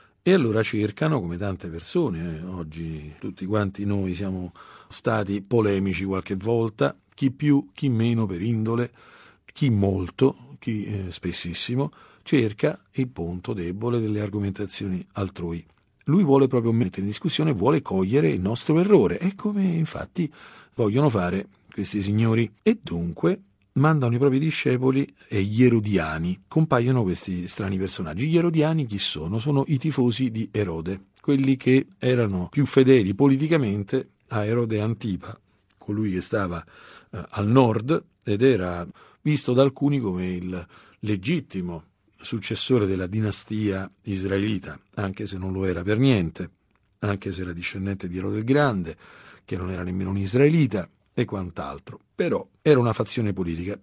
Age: 50-69